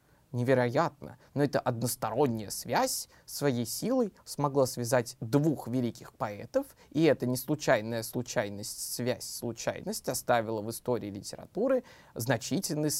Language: Russian